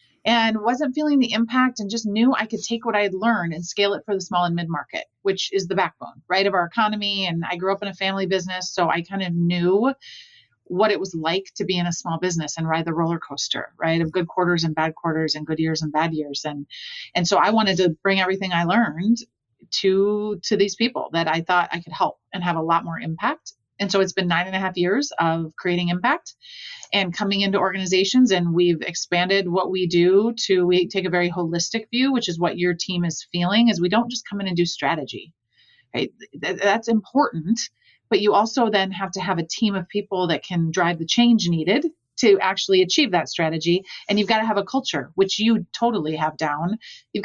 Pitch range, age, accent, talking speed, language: 170-210 Hz, 30-49, American, 230 wpm, English